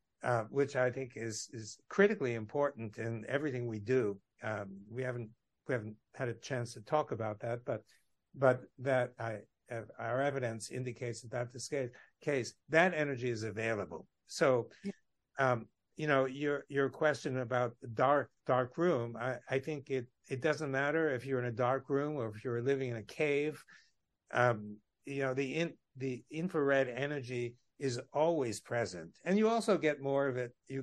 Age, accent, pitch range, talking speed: 60-79, American, 115-140 Hz, 185 wpm